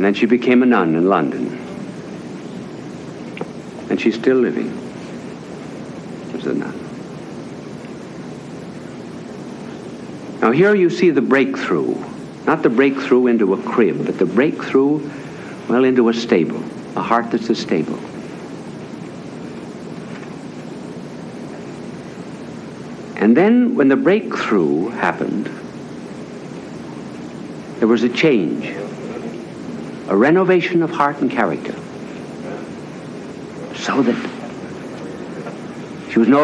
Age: 60-79